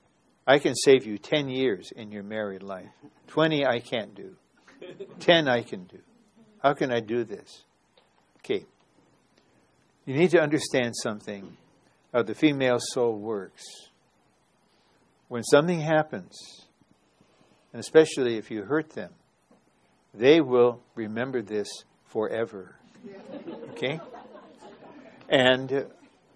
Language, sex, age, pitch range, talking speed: English, male, 60-79, 120-160 Hz, 115 wpm